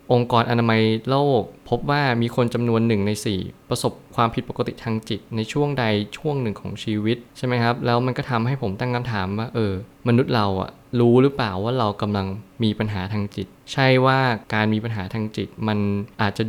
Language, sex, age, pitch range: Thai, male, 20-39, 105-125 Hz